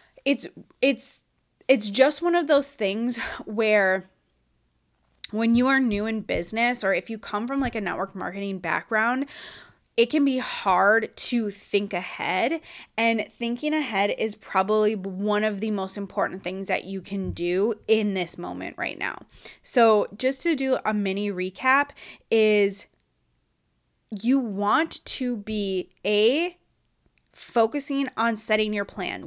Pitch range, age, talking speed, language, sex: 195-240 Hz, 10-29, 145 wpm, English, female